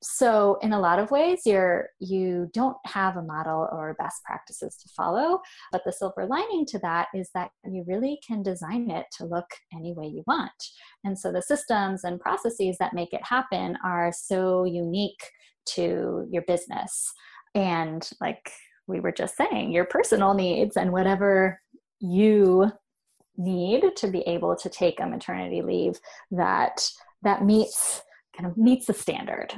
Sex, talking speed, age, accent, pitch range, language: female, 165 wpm, 20-39, American, 175-235 Hz, English